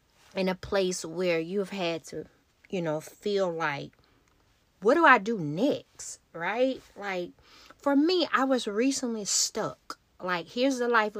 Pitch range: 175-235 Hz